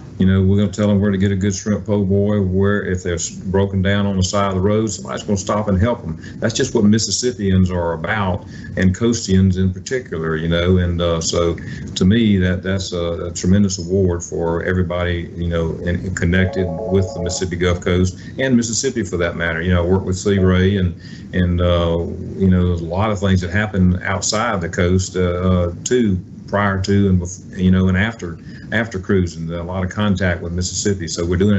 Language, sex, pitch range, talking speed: English, male, 90-100 Hz, 220 wpm